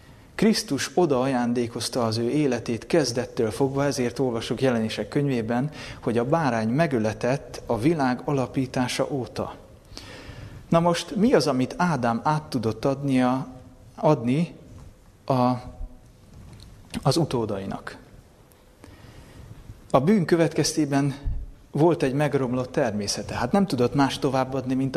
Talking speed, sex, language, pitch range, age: 105 wpm, male, Hungarian, 120-150 Hz, 30-49